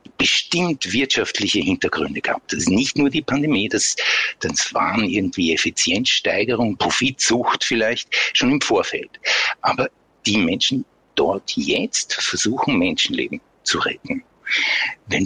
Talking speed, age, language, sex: 120 wpm, 60-79, German, male